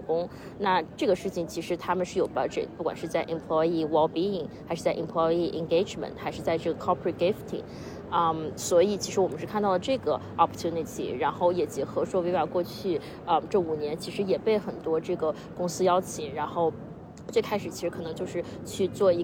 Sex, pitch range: female, 160-185 Hz